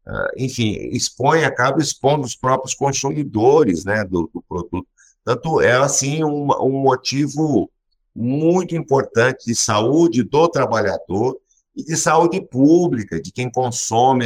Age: 60-79